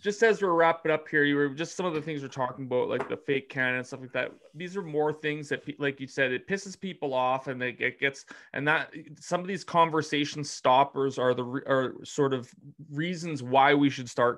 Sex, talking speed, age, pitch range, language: male, 240 wpm, 30-49, 130-155 Hz, English